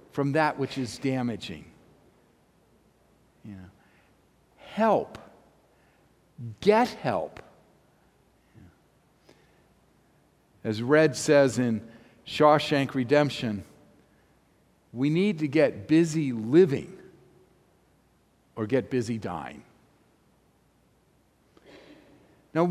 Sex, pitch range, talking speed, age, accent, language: male, 145-210 Hz, 65 wpm, 50-69, American, English